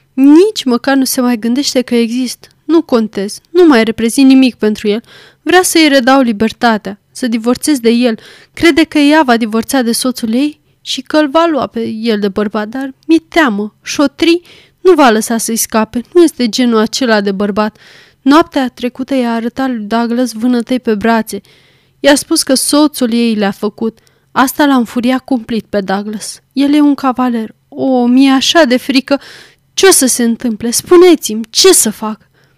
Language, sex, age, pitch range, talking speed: Romanian, female, 20-39, 210-275 Hz, 175 wpm